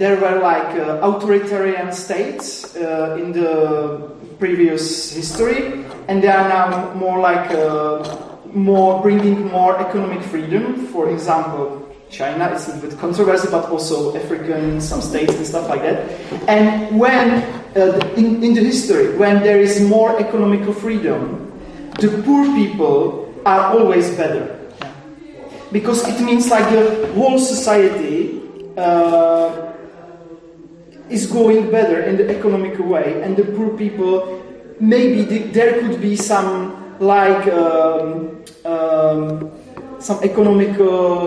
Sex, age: male, 30-49